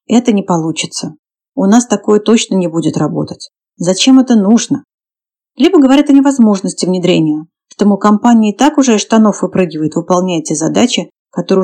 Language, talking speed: Russian, 160 wpm